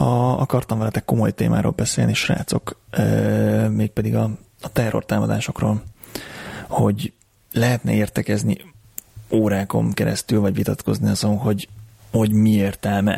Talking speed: 120 wpm